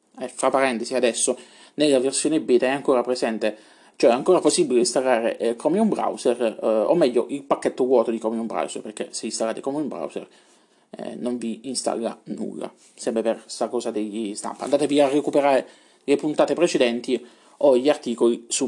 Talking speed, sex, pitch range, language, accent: 180 wpm, male, 125-185 Hz, Italian, native